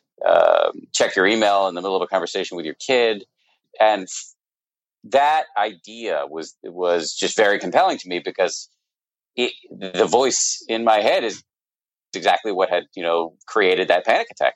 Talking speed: 170 wpm